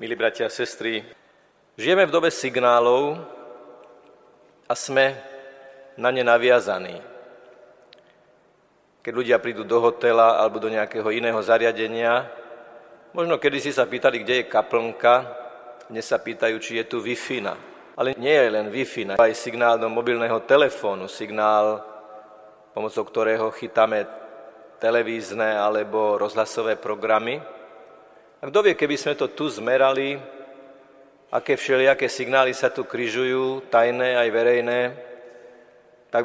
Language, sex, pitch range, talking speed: Slovak, male, 110-130 Hz, 120 wpm